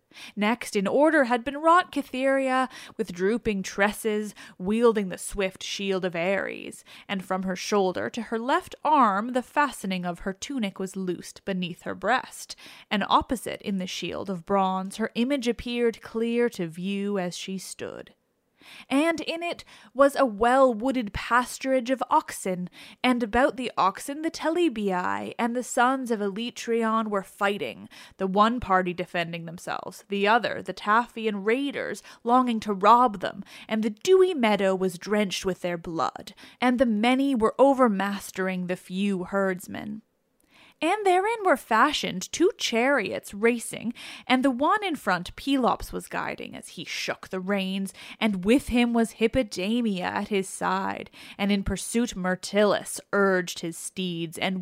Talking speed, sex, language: 155 wpm, female, English